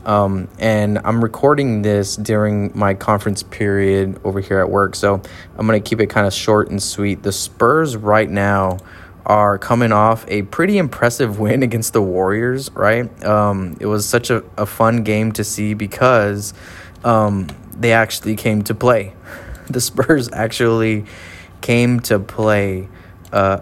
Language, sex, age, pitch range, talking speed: English, male, 20-39, 100-110 Hz, 160 wpm